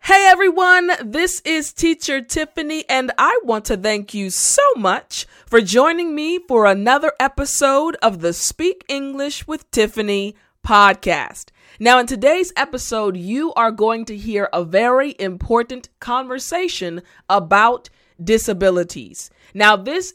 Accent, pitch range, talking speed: American, 200-280 Hz, 130 wpm